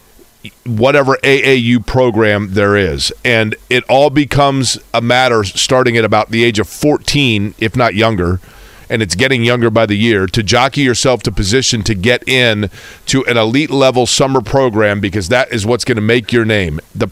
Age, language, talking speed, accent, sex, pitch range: 40-59, English, 180 wpm, American, male, 110-135 Hz